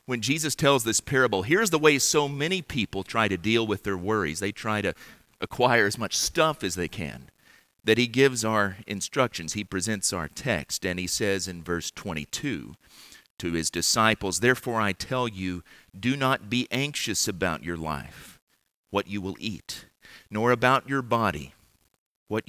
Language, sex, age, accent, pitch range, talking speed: English, male, 40-59, American, 95-125 Hz, 175 wpm